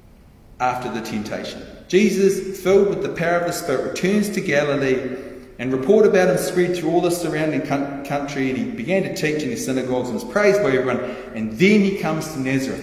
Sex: male